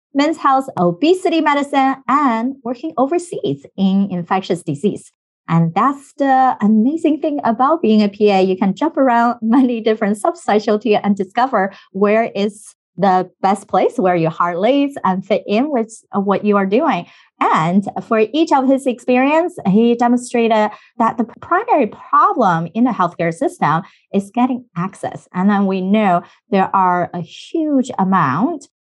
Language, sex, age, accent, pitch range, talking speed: English, female, 30-49, American, 185-255 Hz, 150 wpm